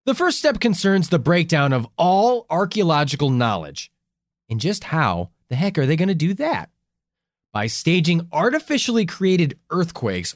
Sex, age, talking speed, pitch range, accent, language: male, 20-39, 150 wpm, 125-200 Hz, American, English